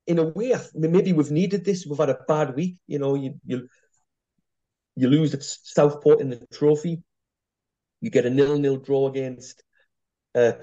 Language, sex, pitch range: English, male, 120-150 Hz